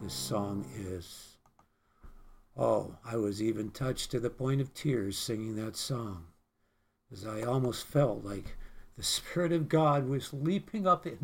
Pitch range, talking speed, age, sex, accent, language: 105-160 Hz, 155 wpm, 60-79, male, American, English